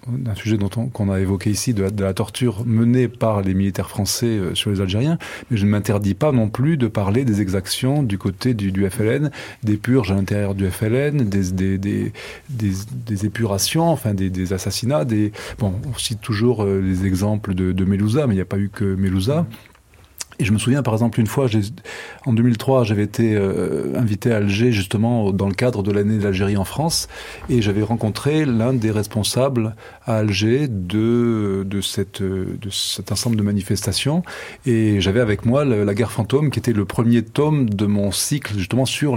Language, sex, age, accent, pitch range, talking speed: French, male, 30-49, French, 100-120 Hz, 200 wpm